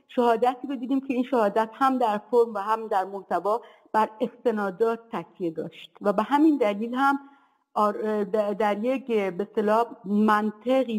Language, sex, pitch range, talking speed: Persian, female, 205-270 Hz, 145 wpm